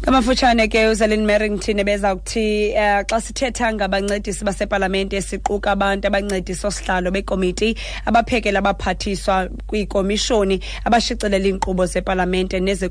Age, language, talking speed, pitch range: 20-39, English, 160 wpm, 190-215 Hz